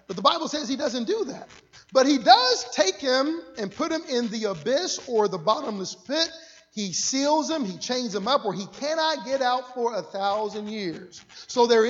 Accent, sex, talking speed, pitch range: American, male, 205 wpm, 235-335 Hz